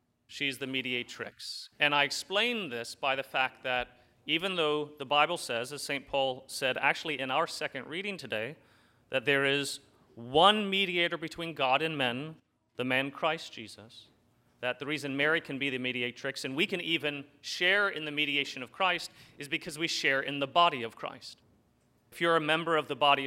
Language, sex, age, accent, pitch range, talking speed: English, male, 30-49, American, 135-165 Hz, 190 wpm